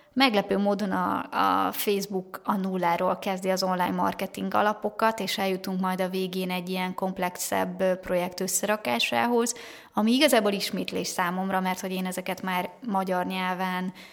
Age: 20-39